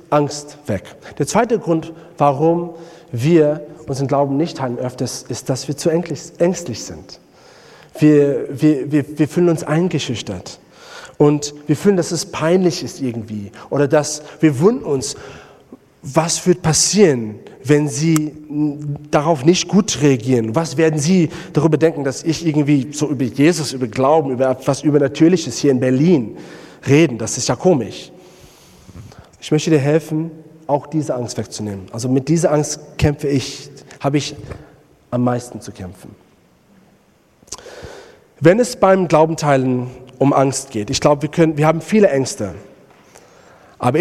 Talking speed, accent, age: 145 wpm, German, 40-59